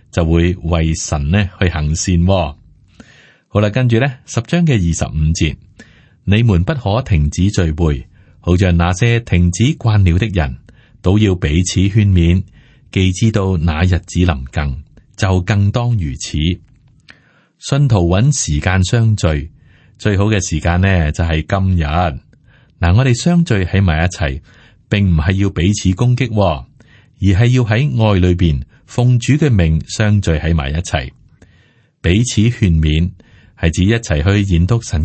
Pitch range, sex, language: 85-110 Hz, male, Chinese